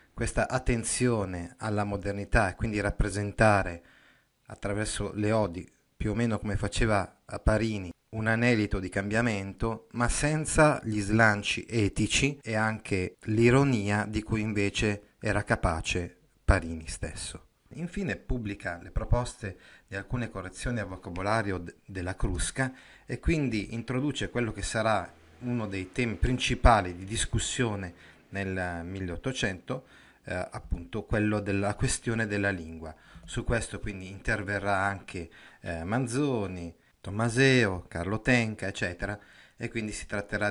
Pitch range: 95-115 Hz